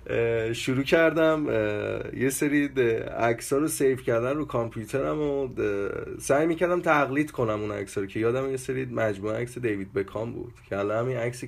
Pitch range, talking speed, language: 105-130 Hz, 155 wpm, Persian